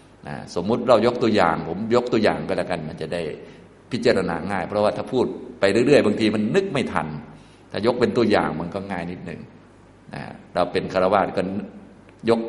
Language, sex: Thai, male